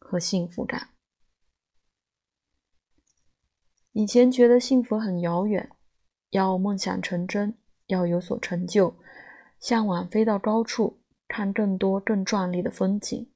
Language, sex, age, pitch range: Chinese, female, 20-39, 180-225 Hz